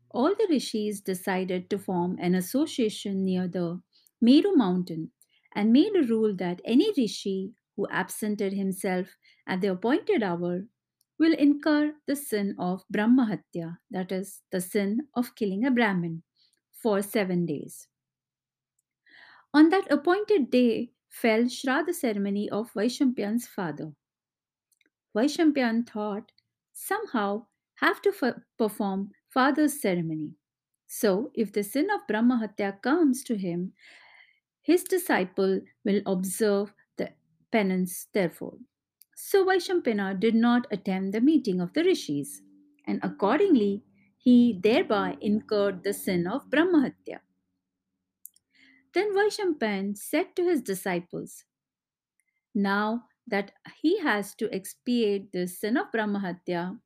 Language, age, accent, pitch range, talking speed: English, 50-69, Indian, 185-260 Hz, 120 wpm